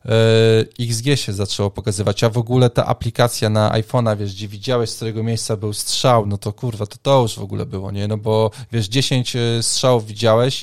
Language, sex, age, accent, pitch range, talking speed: Polish, male, 20-39, native, 105-125 Hz, 200 wpm